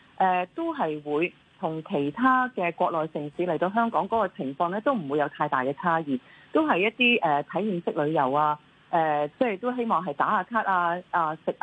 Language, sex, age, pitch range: Chinese, female, 30-49, 155-230 Hz